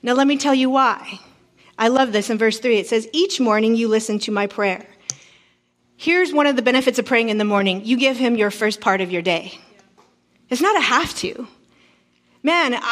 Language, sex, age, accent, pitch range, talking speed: English, female, 30-49, American, 210-285 Hz, 215 wpm